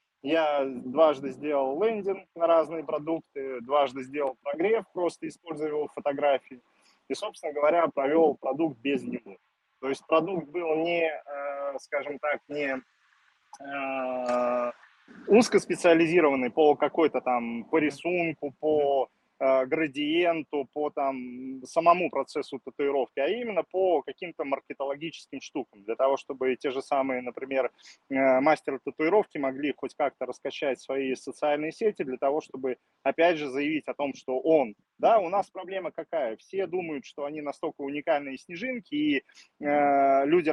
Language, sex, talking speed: Russian, male, 130 wpm